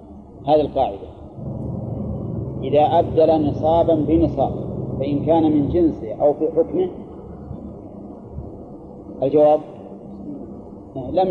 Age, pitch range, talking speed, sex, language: 40-59, 105-165 Hz, 80 wpm, male, Arabic